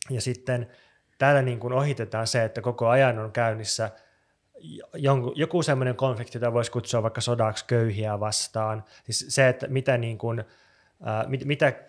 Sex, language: male, Finnish